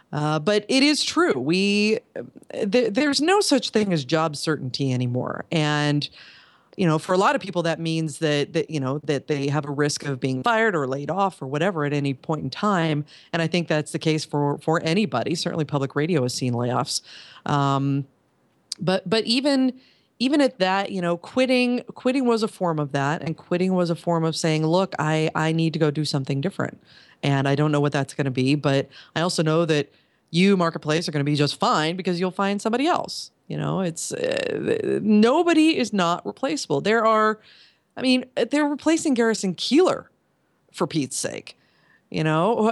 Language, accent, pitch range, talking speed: English, American, 155-235 Hz, 200 wpm